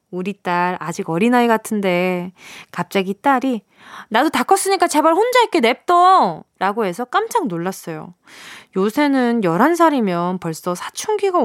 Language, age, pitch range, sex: Korean, 20-39, 185-265 Hz, female